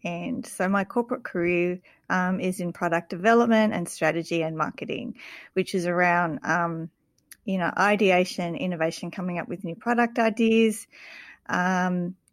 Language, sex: English, female